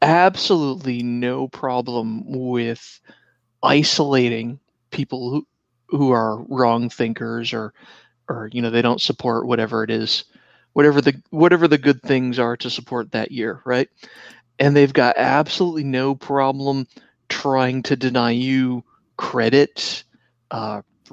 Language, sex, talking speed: English, male, 130 wpm